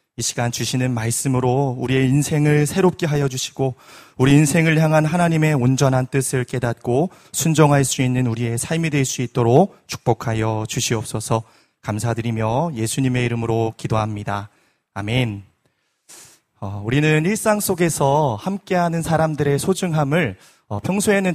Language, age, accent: Korean, 30-49, native